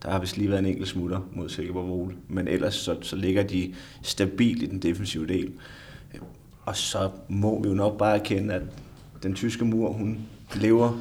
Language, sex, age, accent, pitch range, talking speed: Danish, male, 30-49, native, 95-110 Hz, 190 wpm